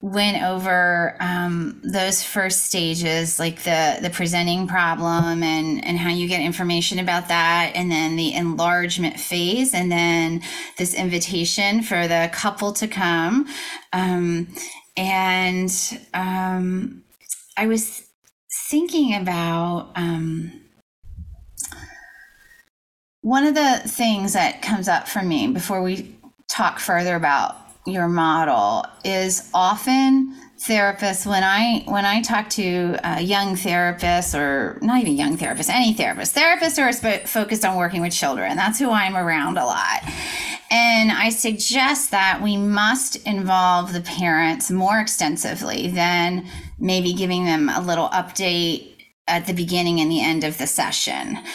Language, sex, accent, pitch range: English, female, American, 175-220 Hz